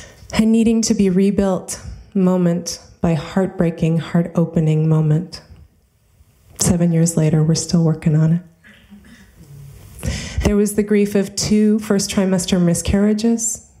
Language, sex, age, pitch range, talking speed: English, female, 30-49, 155-185 Hz, 115 wpm